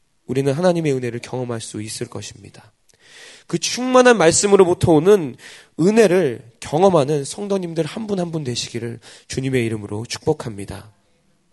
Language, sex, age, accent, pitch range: Korean, male, 20-39, native, 120-190 Hz